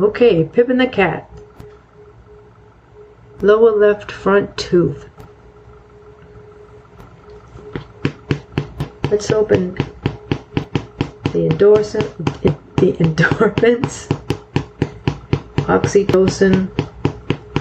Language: English